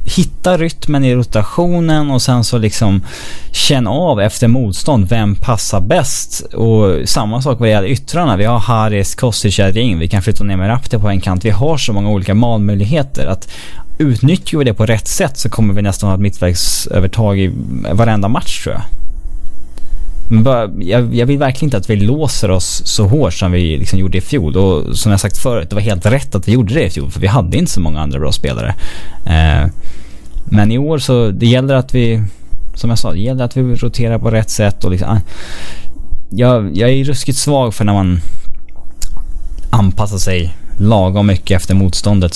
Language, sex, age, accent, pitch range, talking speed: English, male, 20-39, Norwegian, 90-120 Hz, 190 wpm